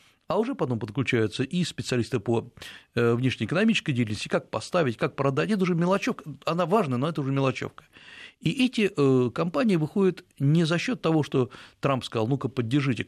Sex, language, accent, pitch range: male, Russian, native, 115-150 Hz